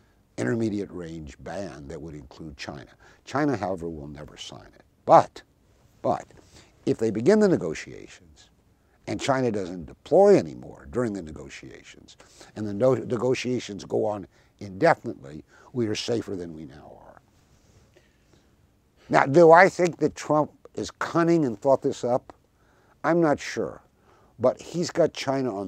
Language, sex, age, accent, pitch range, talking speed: English, male, 60-79, American, 95-140 Hz, 145 wpm